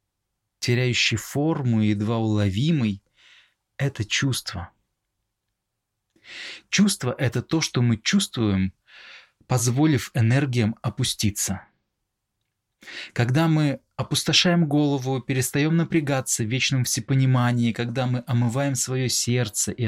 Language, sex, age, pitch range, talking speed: Russian, male, 20-39, 105-130 Hz, 95 wpm